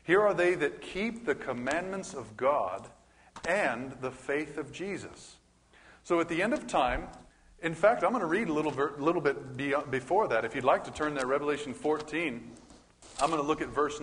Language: English